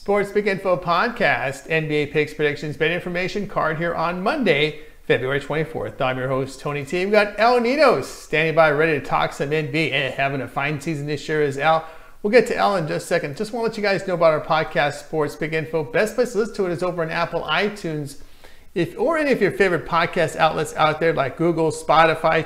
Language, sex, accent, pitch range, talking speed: English, male, American, 155-185 Hz, 225 wpm